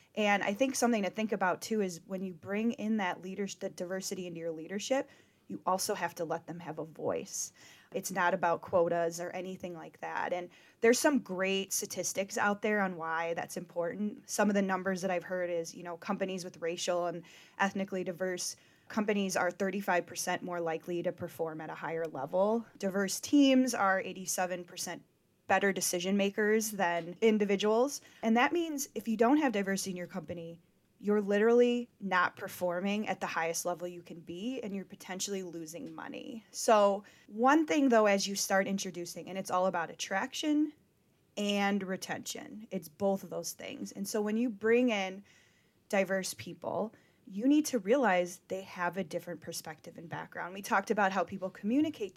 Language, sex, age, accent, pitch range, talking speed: English, female, 20-39, American, 175-215 Hz, 175 wpm